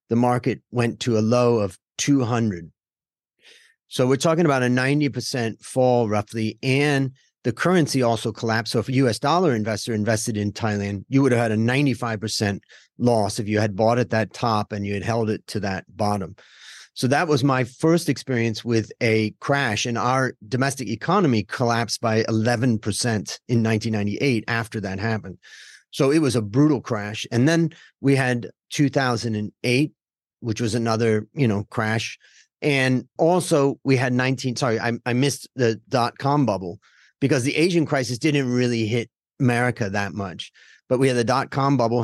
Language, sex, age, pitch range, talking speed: English, male, 40-59, 110-135 Hz, 170 wpm